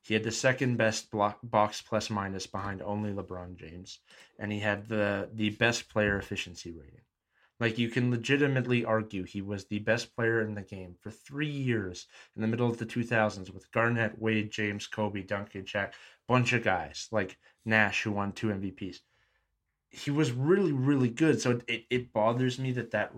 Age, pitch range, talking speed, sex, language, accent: 20-39, 105-125 Hz, 185 wpm, male, English, American